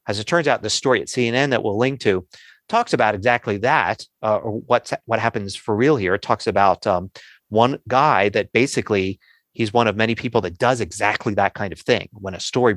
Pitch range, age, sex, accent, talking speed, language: 105-130 Hz, 30-49, male, American, 215 wpm, English